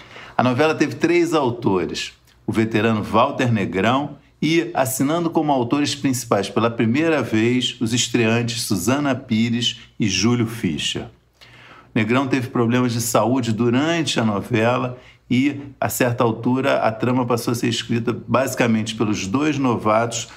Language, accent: Portuguese, Brazilian